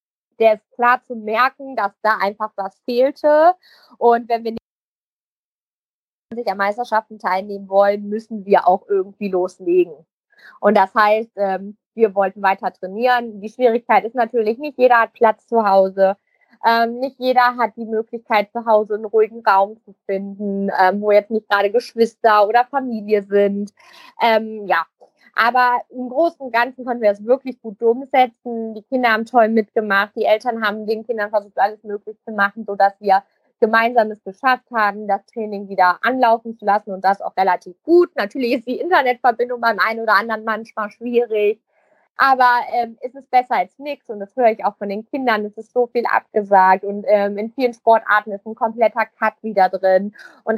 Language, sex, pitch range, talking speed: German, female, 200-240 Hz, 175 wpm